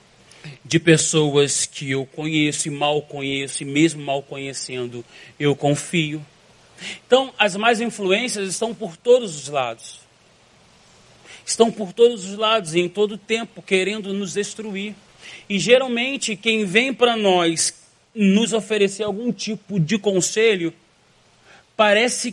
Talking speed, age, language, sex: 130 wpm, 30-49, Portuguese, male